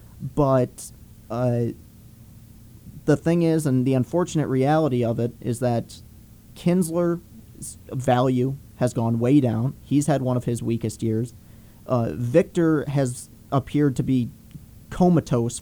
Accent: American